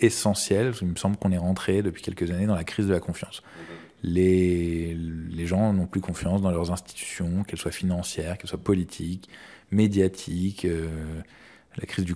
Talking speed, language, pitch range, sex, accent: 180 wpm, French, 85-105 Hz, male, French